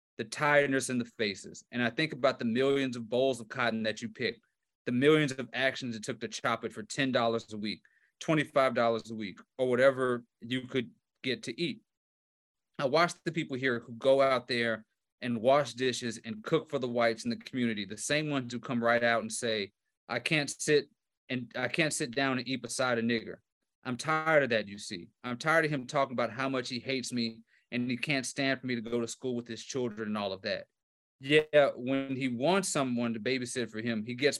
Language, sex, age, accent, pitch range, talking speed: English, male, 30-49, American, 115-135 Hz, 225 wpm